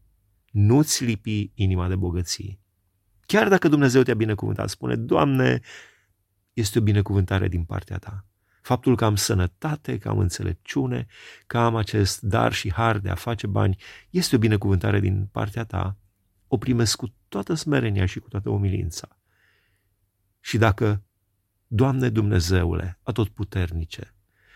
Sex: male